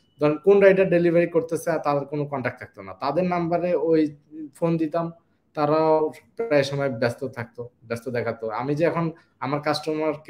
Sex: male